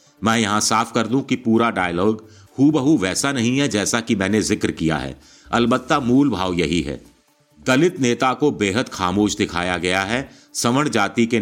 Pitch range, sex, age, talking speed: 90-120 Hz, male, 50-69, 180 wpm